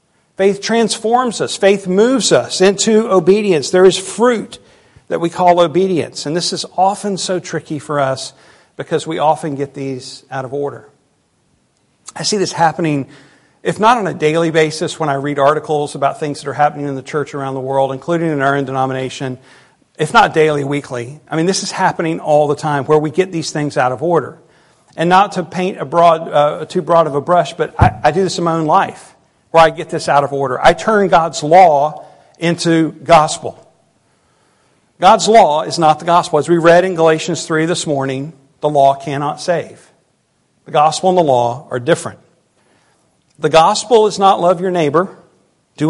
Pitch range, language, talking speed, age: 145-185 Hz, English, 195 wpm, 50-69